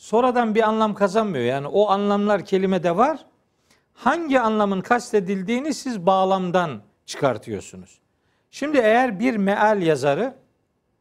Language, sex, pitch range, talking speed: Turkish, male, 155-235 Hz, 110 wpm